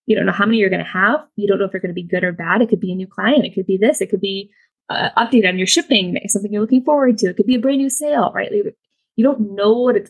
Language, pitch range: English, 195-245 Hz